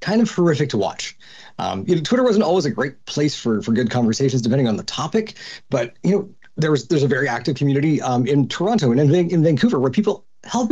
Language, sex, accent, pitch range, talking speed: English, male, American, 125-190 Hz, 230 wpm